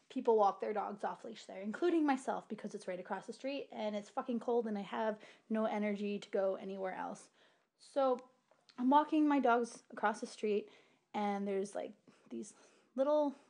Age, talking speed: 20-39, 180 wpm